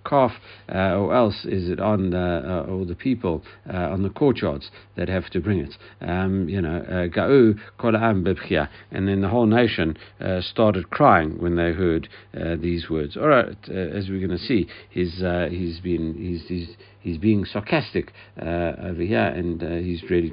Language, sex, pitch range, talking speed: English, male, 85-105 Hz, 185 wpm